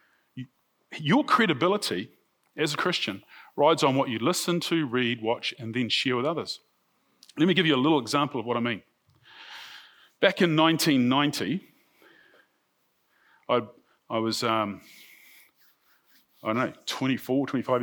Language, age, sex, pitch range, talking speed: English, 40-59, male, 120-155 Hz, 140 wpm